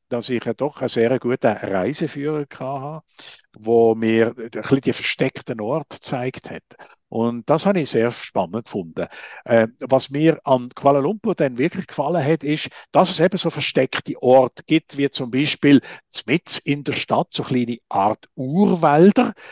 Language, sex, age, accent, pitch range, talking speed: German, male, 50-69, Austrian, 125-175 Hz, 165 wpm